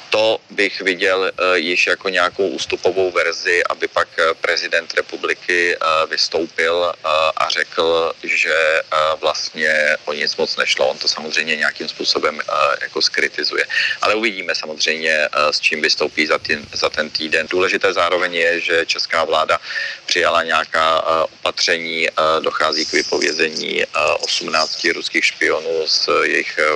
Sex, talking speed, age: male, 120 wpm, 40-59